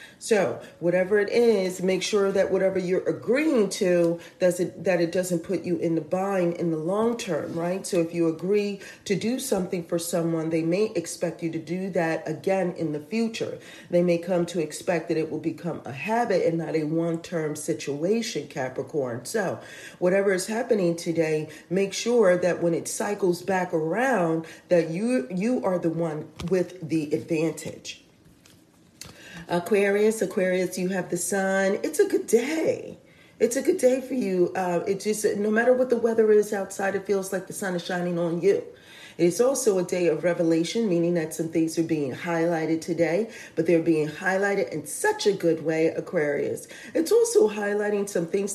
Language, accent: English, American